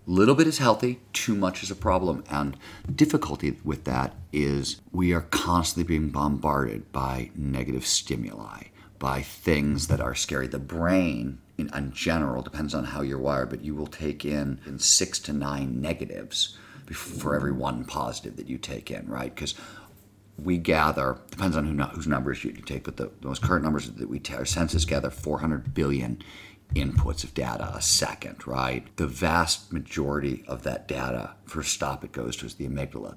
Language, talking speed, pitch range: English, 175 wpm, 70-90 Hz